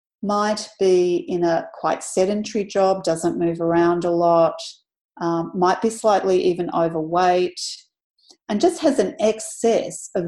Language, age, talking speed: English, 40-59, 140 wpm